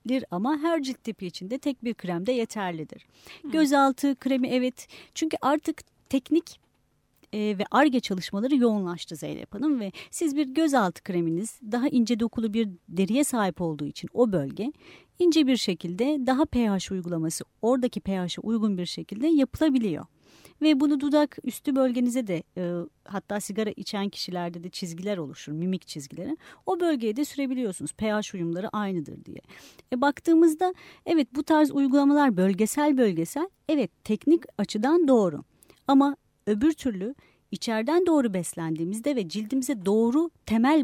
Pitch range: 190-275 Hz